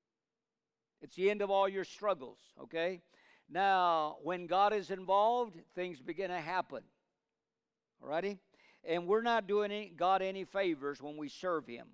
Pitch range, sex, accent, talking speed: 170-230 Hz, male, American, 145 wpm